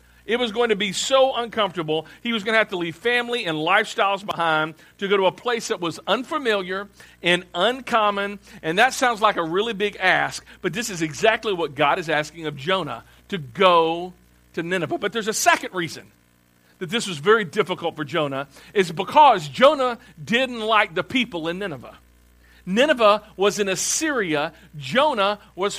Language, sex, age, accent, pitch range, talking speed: English, male, 50-69, American, 165-230 Hz, 180 wpm